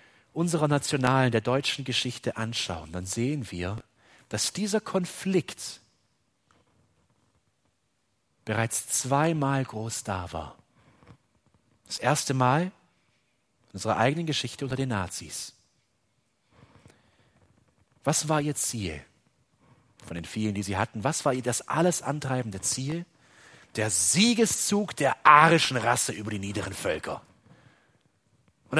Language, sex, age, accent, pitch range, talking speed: German, male, 40-59, German, 115-190 Hz, 115 wpm